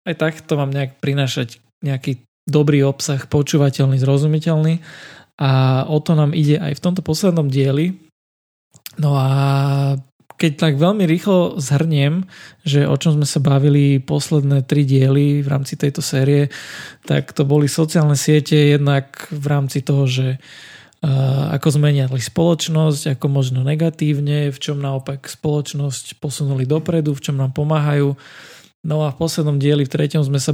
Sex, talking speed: male, 150 wpm